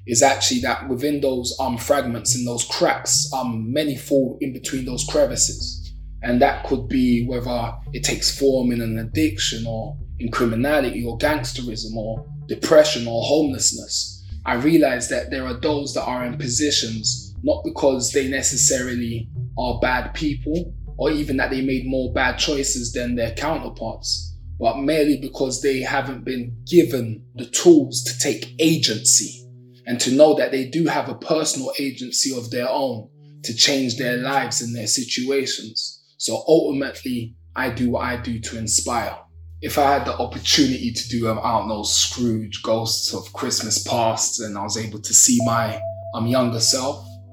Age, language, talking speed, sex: 20-39, English, 165 wpm, male